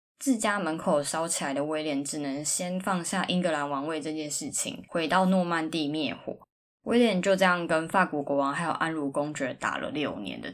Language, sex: Chinese, female